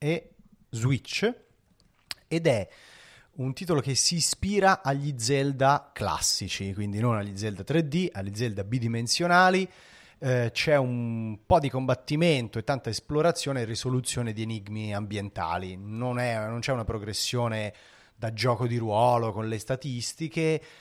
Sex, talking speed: male, 135 wpm